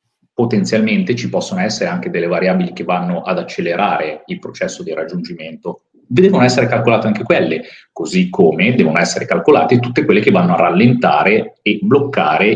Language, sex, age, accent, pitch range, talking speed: Italian, male, 40-59, native, 115-195 Hz, 160 wpm